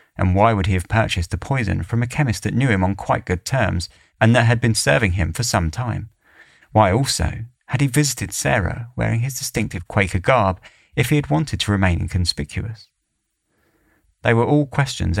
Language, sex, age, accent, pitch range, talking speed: English, male, 30-49, British, 90-110 Hz, 195 wpm